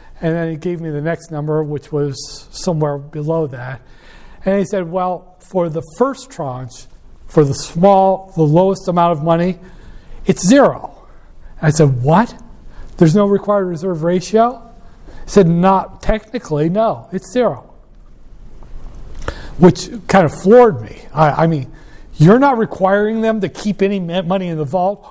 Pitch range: 150-195 Hz